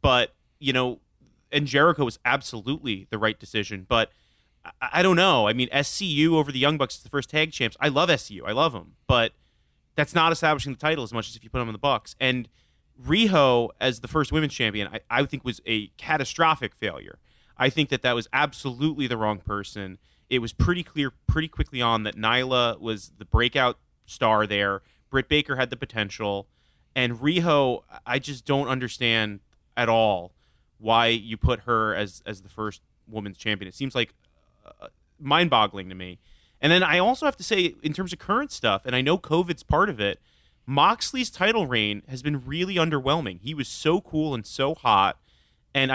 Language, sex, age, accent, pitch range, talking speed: English, male, 30-49, American, 110-150 Hz, 195 wpm